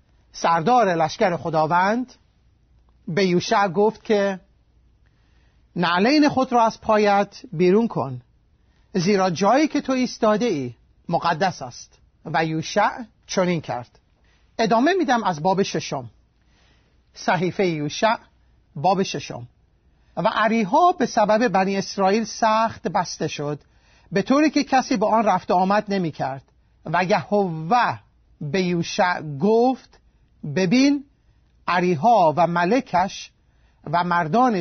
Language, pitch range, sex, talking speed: Persian, 170-225 Hz, male, 115 wpm